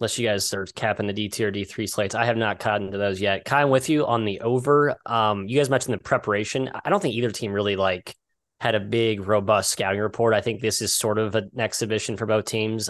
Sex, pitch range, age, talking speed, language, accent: male, 105-130 Hz, 20-39, 250 wpm, English, American